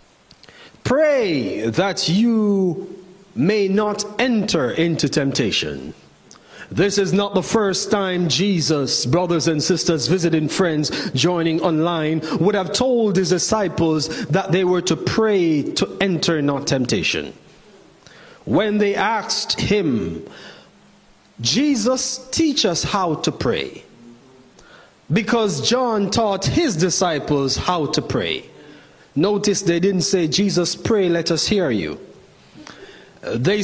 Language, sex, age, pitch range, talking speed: English, male, 40-59, 170-210 Hz, 115 wpm